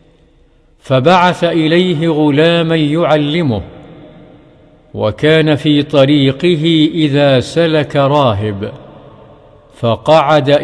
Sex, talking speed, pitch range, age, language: male, 60 wpm, 140-160 Hz, 50-69, English